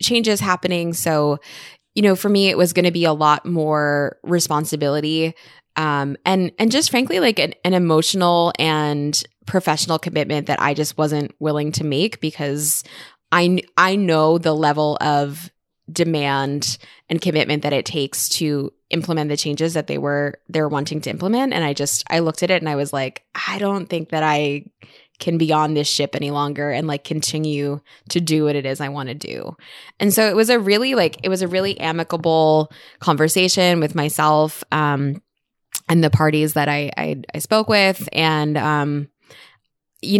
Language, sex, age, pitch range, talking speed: English, female, 20-39, 145-175 Hz, 180 wpm